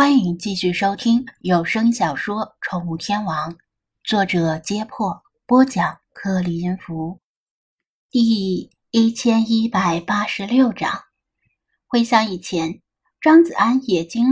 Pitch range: 190-260 Hz